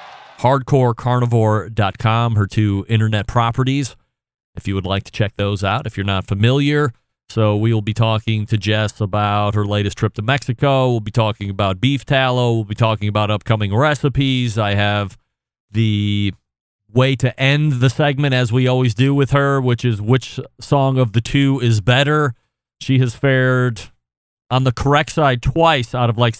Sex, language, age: male, English, 30-49